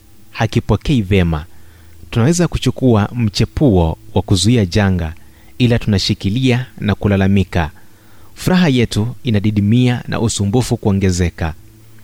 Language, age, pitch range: Swahili, 30-49, 95-115 Hz